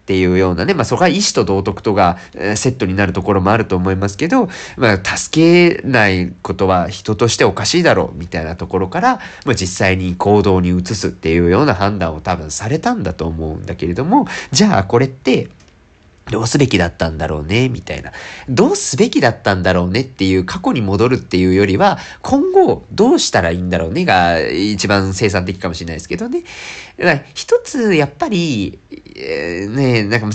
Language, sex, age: Japanese, male, 40-59